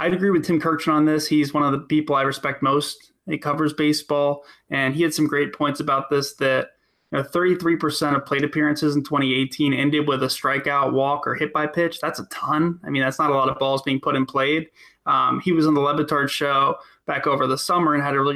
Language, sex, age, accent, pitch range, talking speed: English, male, 20-39, American, 135-150 Hz, 235 wpm